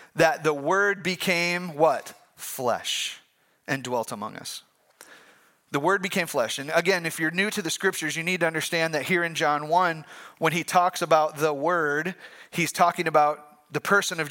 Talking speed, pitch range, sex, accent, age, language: 180 wpm, 160-200 Hz, male, American, 30-49, English